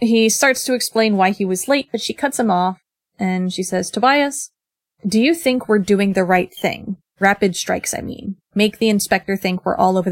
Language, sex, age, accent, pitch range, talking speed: English, female, 30-49, American, 185-220 Hz, 215 wpm